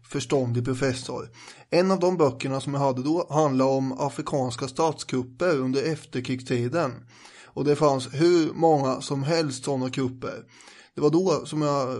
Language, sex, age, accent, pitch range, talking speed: English, male, 20-39, Swedish, 130-155 Hz, 150 wpm